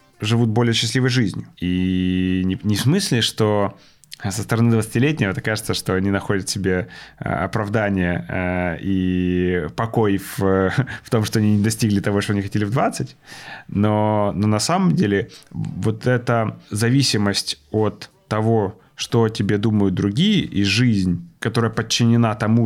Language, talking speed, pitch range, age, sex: Ukrainian, 145 wpm, 100-125 Hz, 20-39, male